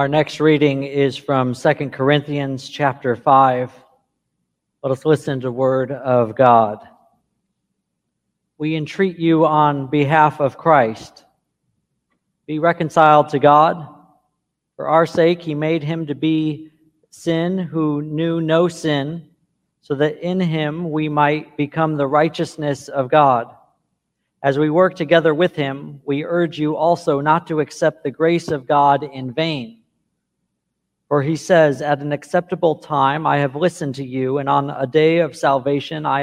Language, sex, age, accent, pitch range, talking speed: English, male, 40-59, American, 140-165 Hz, 150 wpm